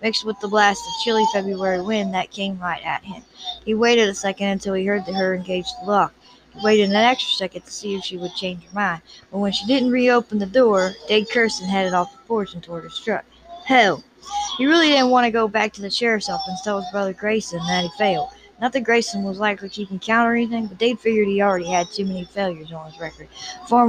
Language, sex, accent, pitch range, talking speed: English, female, American, 185-225 Hz, 240 wpm